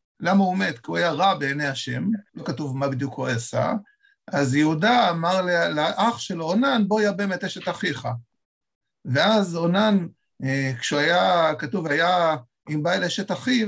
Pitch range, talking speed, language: 140-200 Hz, 160 wpm, Hebrew